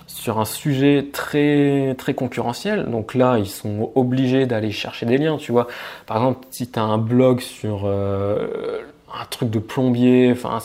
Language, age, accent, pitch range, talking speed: French, 20-39, French, 115-135 Hz, 175 wpm